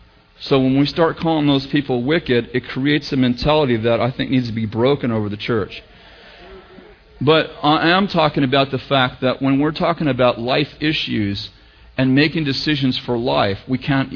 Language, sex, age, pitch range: English, male, 40-59, 115-160 Hz